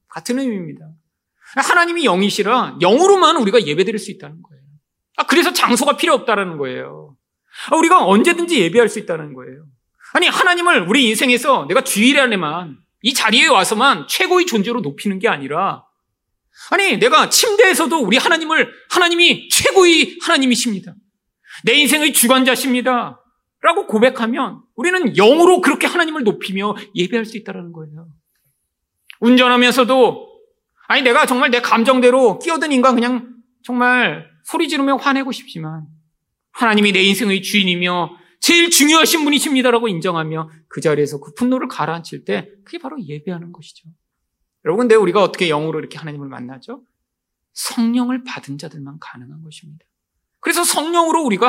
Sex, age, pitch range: male, 30-49, 175-285 Hz